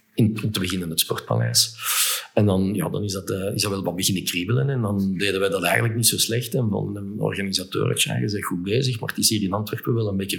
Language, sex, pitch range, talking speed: Dutch, male, 100-115 Hz, 260 wpm